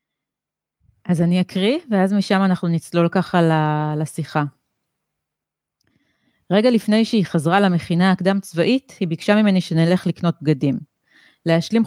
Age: 30-49